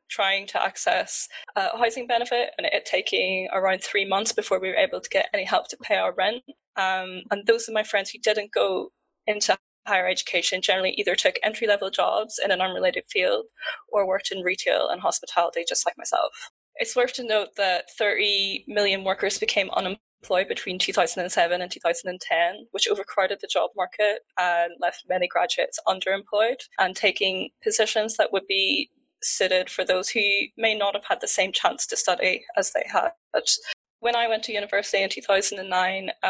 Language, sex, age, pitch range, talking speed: English, female, 10-29, 190-230 Hz, 180 wpm